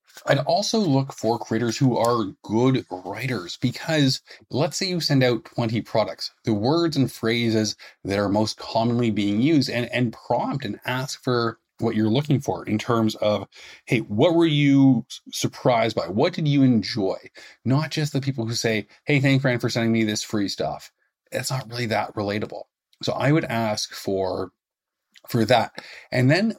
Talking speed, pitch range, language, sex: 180 wpm, 105-125 Hz, English, male